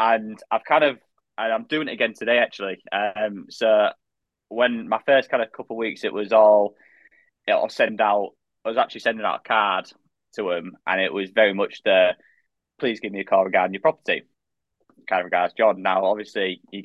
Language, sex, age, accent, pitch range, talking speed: English, male, 20-39, British, 105-135 Hz, 205 wpm